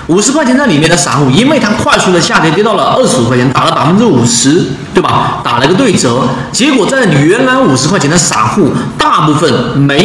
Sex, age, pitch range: male, 40-59, 130-185 Hz